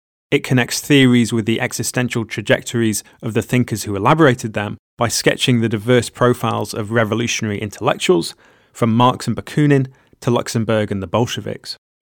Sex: male